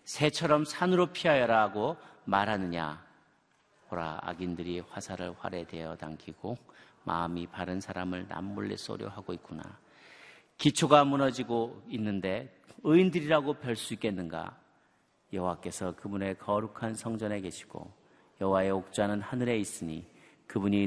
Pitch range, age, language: 90-135 Hz, 40-59, Korean